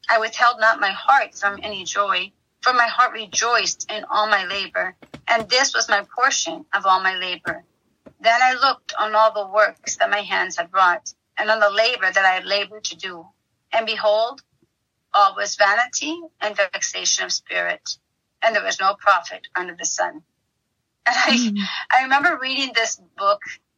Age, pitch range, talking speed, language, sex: 30-49, 200-270 Hz, 180 wpm, English, female